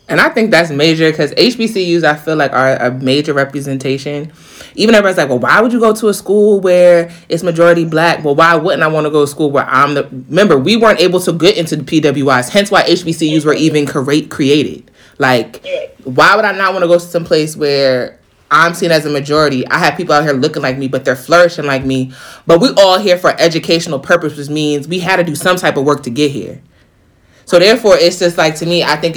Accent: American